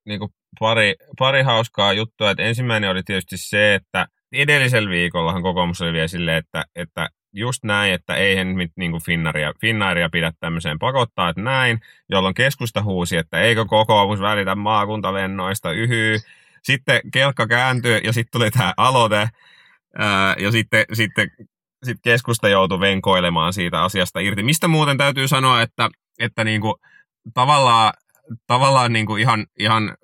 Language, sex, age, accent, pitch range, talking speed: Finnish, male, 30-49, native, 95-115 Hz, 140 wpm